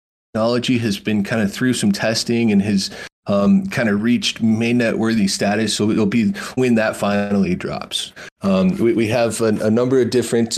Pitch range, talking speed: 110-130 Hz, 180 wpm